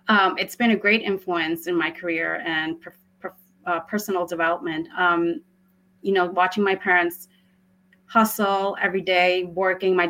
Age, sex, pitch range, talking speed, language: 30-49, female, 170-200 Hz, 155 wpm, English